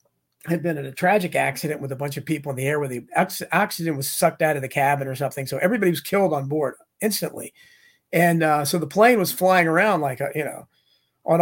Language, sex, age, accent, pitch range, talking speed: English, male, 40-59, American, 160-215 Hz, 230 wpm